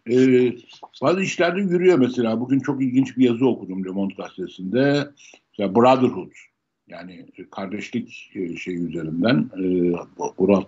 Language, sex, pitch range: Turkish, male, 100-140 Hz